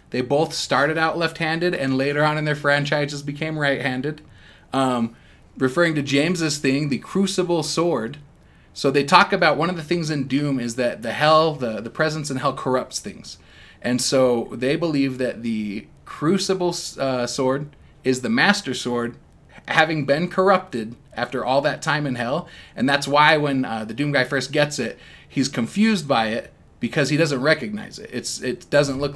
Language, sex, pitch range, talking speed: English, male, 130-165 Hz, 180 wpm